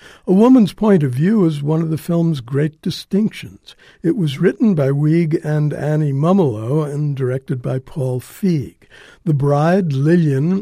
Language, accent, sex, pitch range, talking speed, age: English, American, male, 135-175 Hz, 160 wpm, 60-79